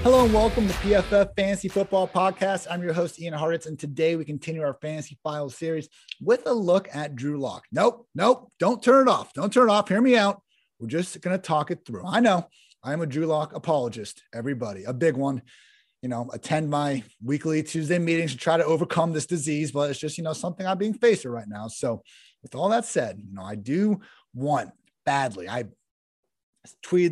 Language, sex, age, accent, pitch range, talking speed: English, male, 30-49, American, 130-185 Hz, 210 wpm